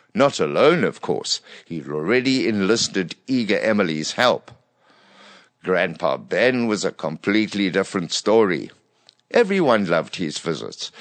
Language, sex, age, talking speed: English, male, 60-79, 115 wpm